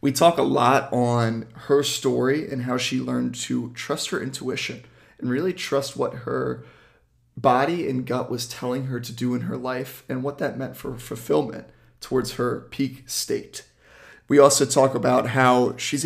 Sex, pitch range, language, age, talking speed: male, 125-140 Hz, English, 30-49, 175 wpm